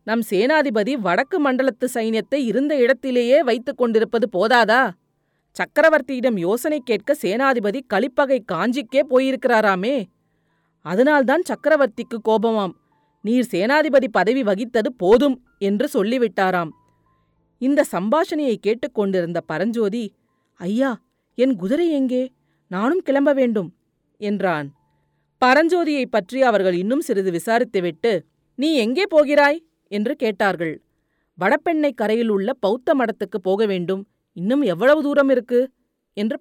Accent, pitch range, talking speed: native, 195-270 Hz, 100 wpm